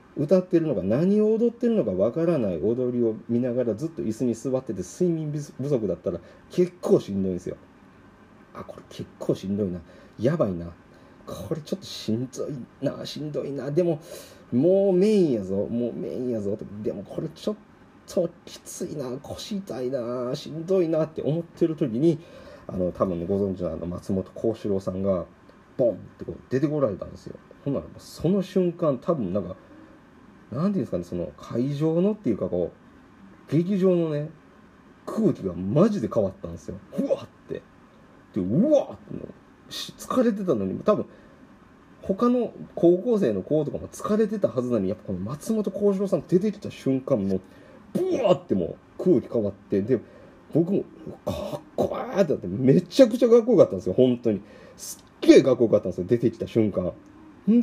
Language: Japanese